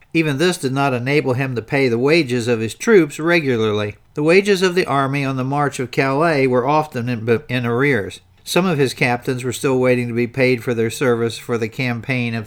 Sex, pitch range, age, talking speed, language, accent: male, 120-145 Hz, 50-69, 220 wpm, English, American